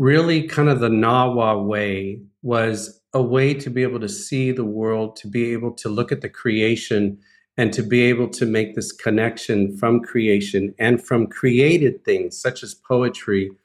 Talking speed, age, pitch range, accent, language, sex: 180 wpm, 40-59, 115-145 Hz, American, English, male